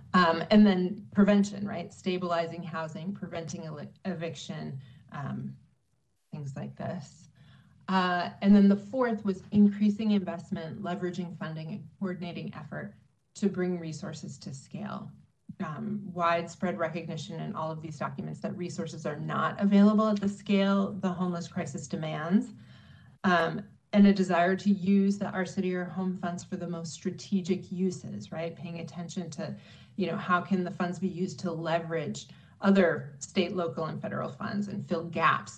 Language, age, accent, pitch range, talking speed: English, 30-49, American, 165-200 Hz, 155 wpm